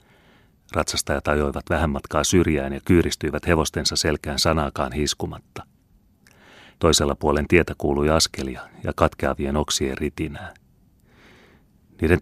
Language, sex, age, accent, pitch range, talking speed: Finnish, male, 30-49, native, 75-90 Hz, 105 wpm